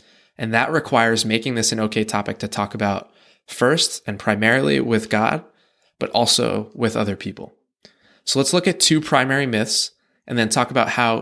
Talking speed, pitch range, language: 175 wpm, 110-135 Hz, English